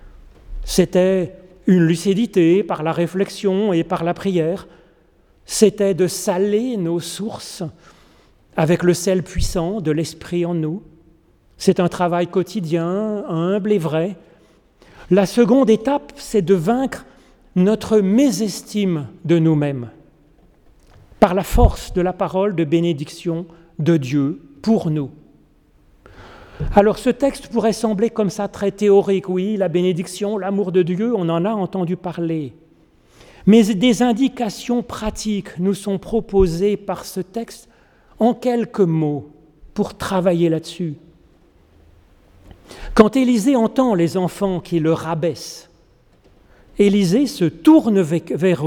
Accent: French